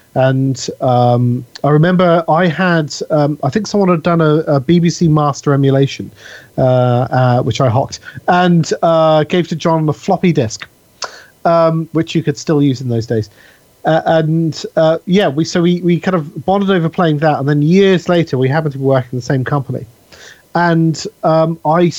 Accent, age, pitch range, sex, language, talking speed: British, 40-59, 130-170 Hz, male, English, 190 wpm